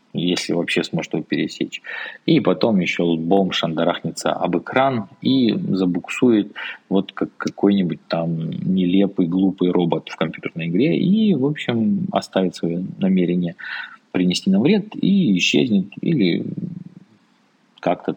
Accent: native